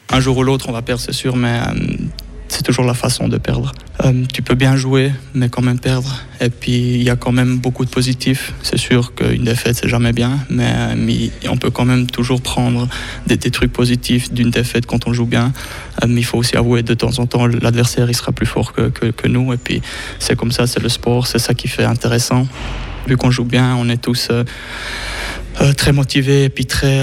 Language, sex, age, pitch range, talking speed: French, male, 20-39, 125-190 Hz, 240 wpm